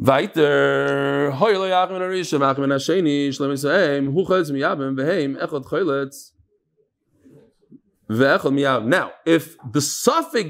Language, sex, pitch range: English, male, 155-230 Hz